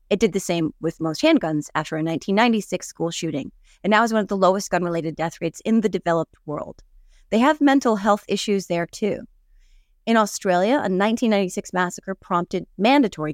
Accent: American